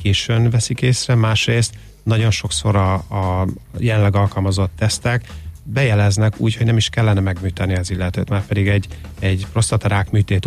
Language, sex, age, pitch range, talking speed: Hungarian, male, 30-49, 95-115 Hz, 150 wpm